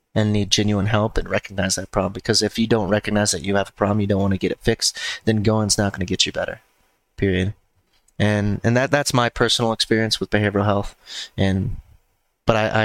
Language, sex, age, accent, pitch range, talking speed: English, male, 20-39, American, 100-110 Hz, 225 wpm